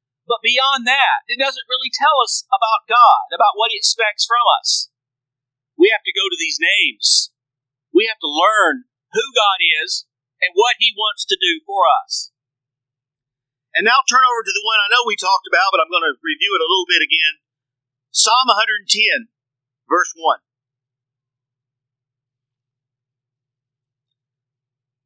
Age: 50-69